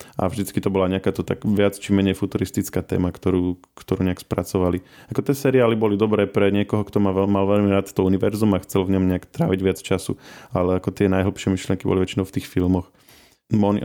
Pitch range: 95-105 Hz